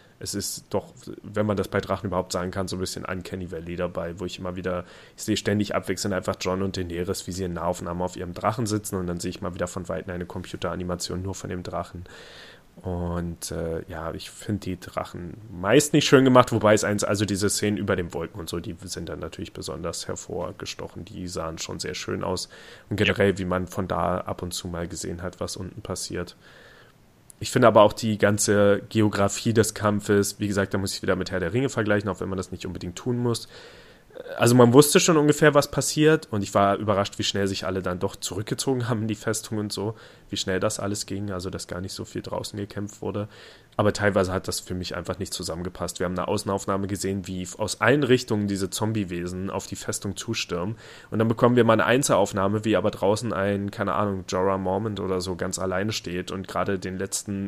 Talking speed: 225 wpm